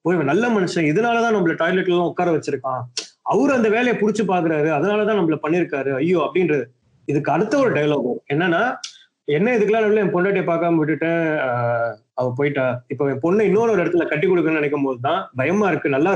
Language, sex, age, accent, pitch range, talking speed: Tamil, male, 30-49, native, 145-210 Hz, 165 wpm